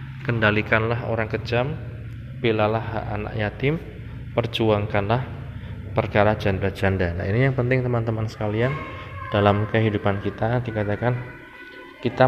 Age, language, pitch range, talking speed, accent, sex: 20-39, Indonesian, 100-115 Hz, 100 wpm, native, male